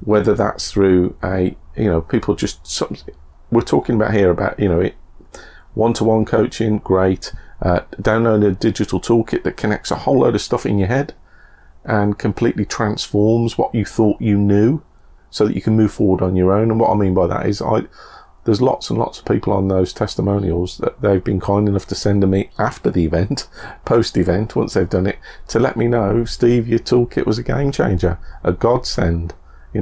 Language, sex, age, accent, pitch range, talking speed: English, male, 40-59, British, 95-115 Hz, 200 wpm